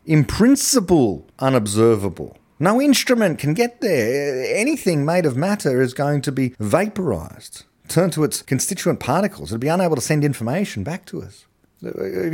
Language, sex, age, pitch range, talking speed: English, male, 30-49, 130-195 Hz, 155 wpm